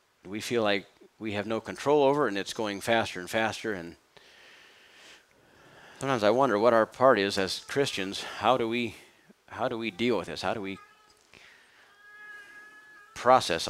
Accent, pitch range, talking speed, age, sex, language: American, 100-130 Hz, 165 wpm, 40-59, male, English